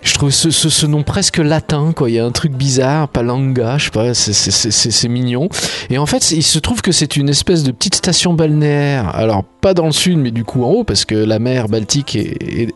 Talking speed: 260 wpm